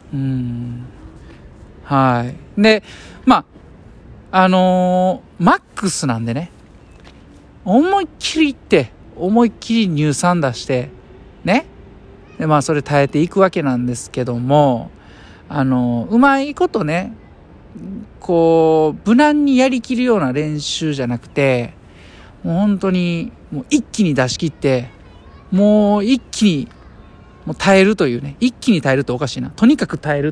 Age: 50-69